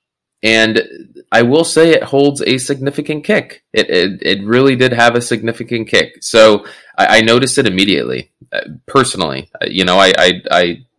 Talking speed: 175 wpm